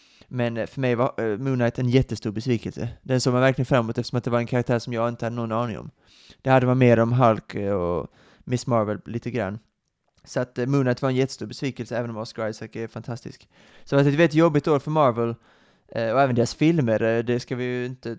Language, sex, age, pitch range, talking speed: Swedish, male, 20-39, 115-140 Hz, 245 wpm